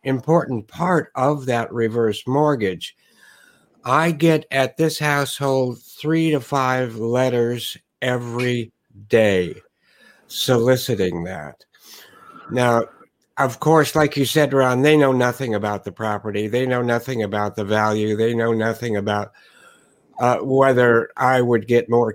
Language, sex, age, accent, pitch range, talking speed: English, male, 60-79, American, 115-135 Hz, 130 wpm